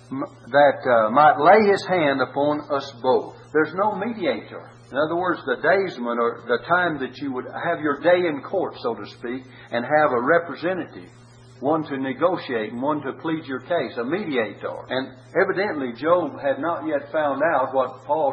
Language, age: English, 60-79